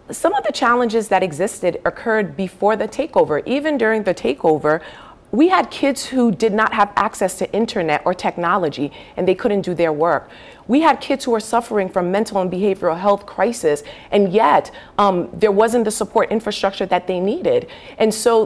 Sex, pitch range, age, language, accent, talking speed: female, 190-235 Hz, 40-59, English, American, 185 wpm